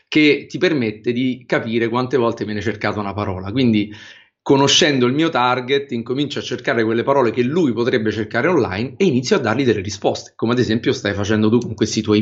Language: Italian